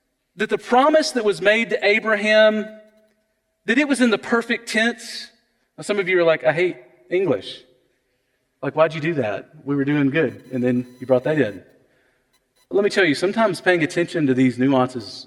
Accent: American